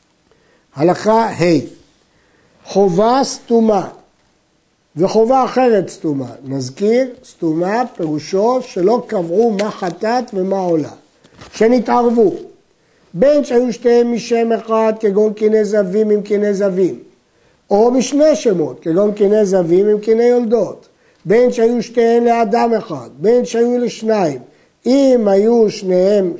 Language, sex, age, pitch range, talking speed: Hebrew, male, 50-69, 195-250 Hz, 110 wpm